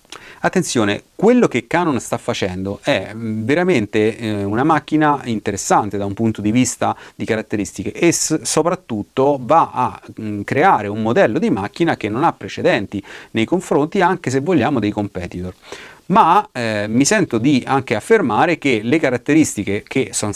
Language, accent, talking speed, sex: Italian, native, 145 wpm, male